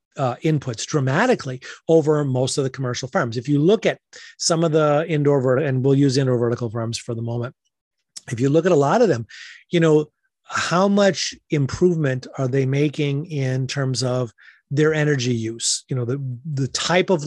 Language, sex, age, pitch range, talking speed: English, male, 30-49, 135-165 Hz, 190 wpm